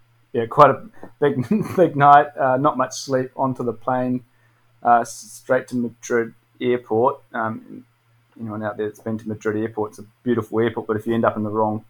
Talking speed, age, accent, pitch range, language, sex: 195 wpm, 20-39, Australian, 110-120 Hz, English, male